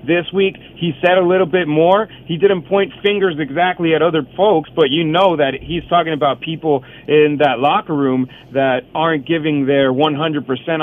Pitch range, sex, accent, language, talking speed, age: 135-160 Hz, male, American, English, 190 wpm, 40-59